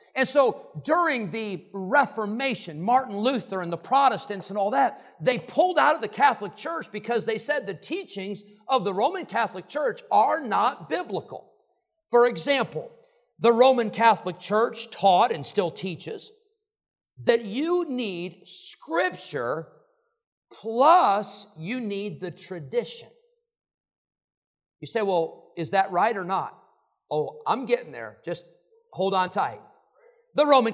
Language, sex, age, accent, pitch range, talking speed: English, male, 50-69, American, 210-295 Hz, 135 wpm